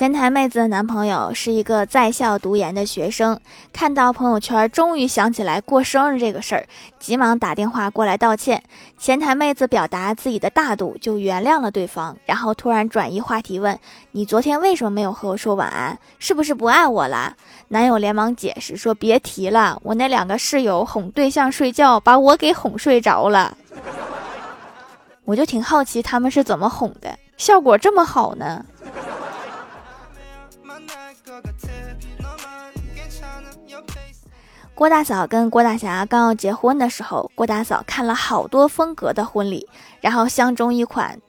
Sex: female